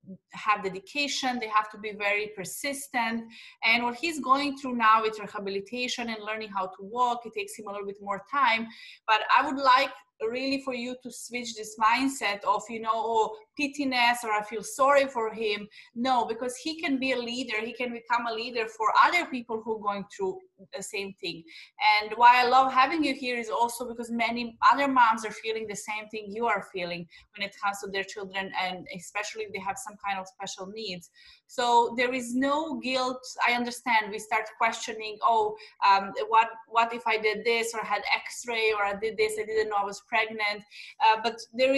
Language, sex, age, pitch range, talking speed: English, female, 20-39, 210-255 Hz, 205 wpm